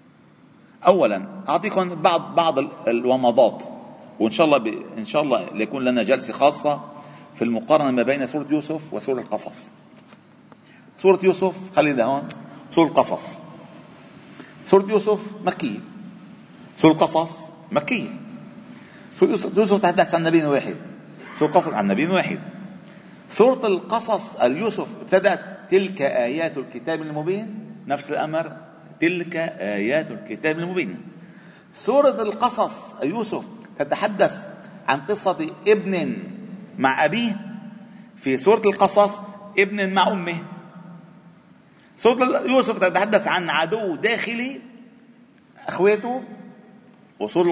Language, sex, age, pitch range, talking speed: Arabic, male, 50-69, 165-215 Hz, 105 wpm